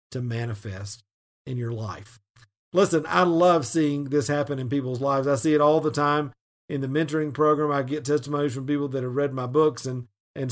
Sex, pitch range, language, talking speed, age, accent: male, 120-155 Hz, English, 205 wpm, 50-69, American